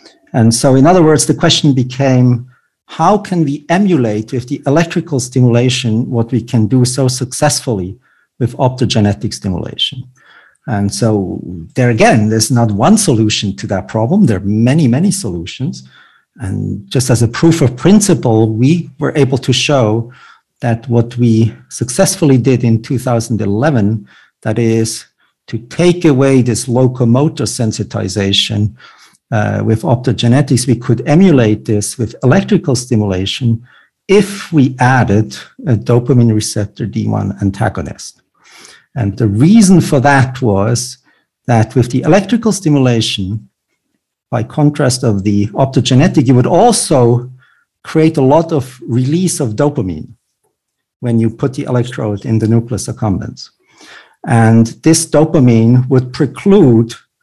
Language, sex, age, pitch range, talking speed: English, male, 50-69, 110-140 Hz, 130 wpm